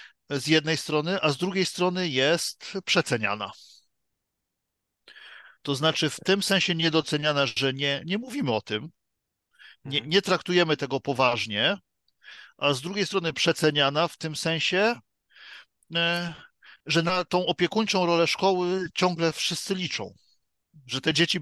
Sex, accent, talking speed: male, native, 130 wpm